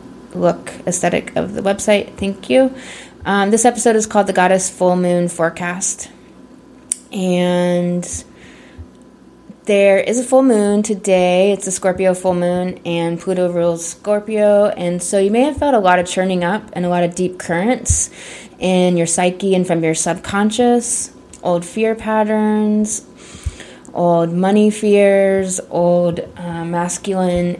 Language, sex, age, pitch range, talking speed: English, female, 20-39, 170-200 Hz, 145 wpm